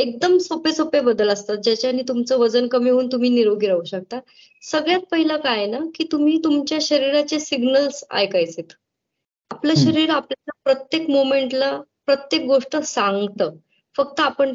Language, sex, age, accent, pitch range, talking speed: Marathi, male, 20-39, native, 235-300 Hz, 140 wpm